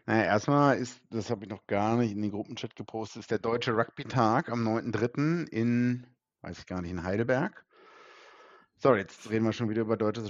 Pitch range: 100-125 Hz